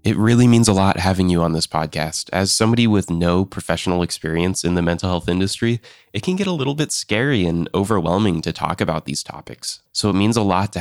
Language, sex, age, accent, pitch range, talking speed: English, male, 20-39, American, 85-105 Hz, 230 wpm